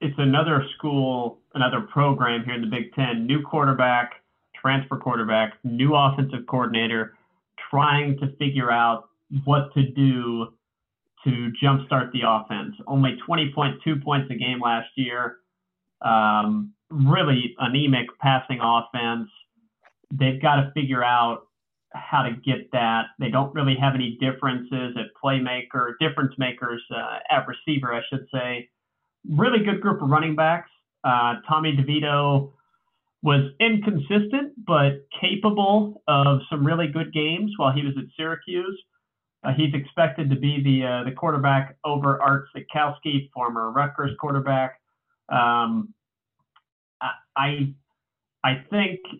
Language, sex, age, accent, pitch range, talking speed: English, male, 40-59, American, 125-150 Hz, 130 wpm